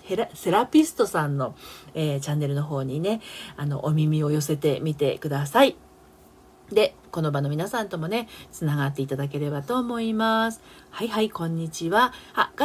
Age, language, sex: 40-59, Japanese, female